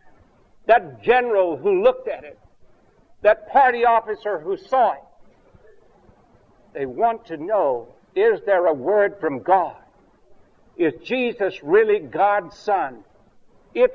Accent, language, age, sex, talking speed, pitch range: American, English, 60-79, male, 120 wpm, 170-230 Hz